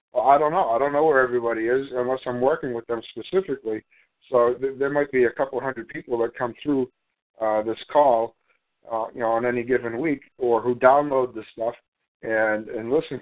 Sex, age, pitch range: male, 60-79, 115-140 Hz